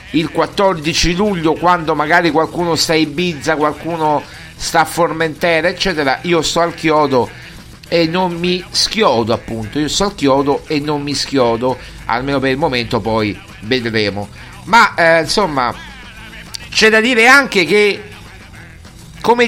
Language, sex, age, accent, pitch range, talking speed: Italian, male, 50-69, native, 130-165 Hz, 140 wpm